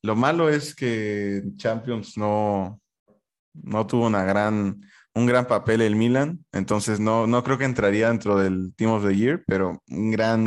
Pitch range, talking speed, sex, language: 100-120 Hz, 170 wpm, male, Spanish